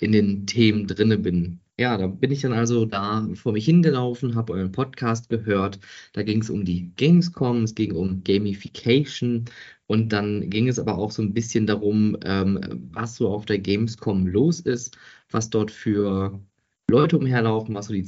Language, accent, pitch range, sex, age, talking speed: German, German, 105-125 Hz, male, 20-39, 185 wpm